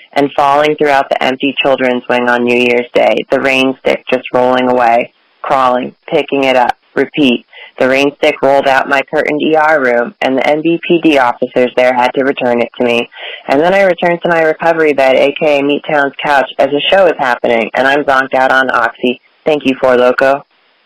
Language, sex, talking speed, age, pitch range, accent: English, female, 200 wpm, 30-49, 125-145 Hz, American